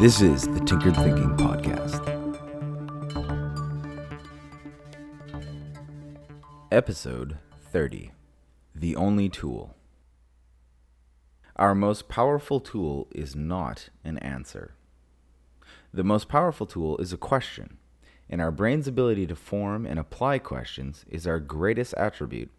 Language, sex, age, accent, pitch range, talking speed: English, male, 30-49, American, 65-100 Hz, 105 wpm